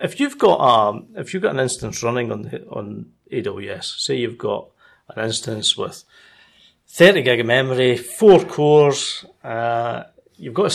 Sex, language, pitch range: male, English, 120-185 Hz